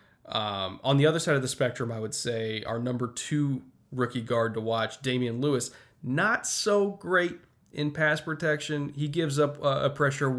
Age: 20-39